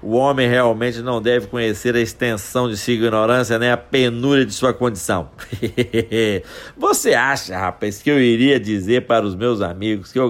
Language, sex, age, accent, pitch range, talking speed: Portuguese, male, 60-79, Brazilian, 110-140 Hz, 175 wpm